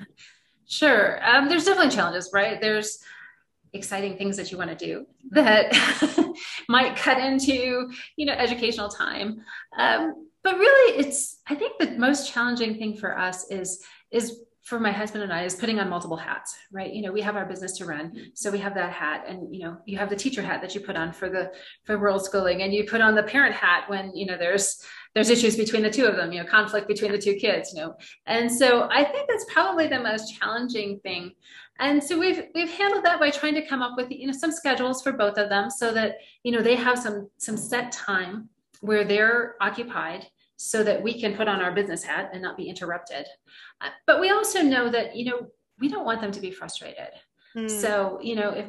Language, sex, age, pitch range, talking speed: English, female, 30-49, 195-255 Hz, 220 wpm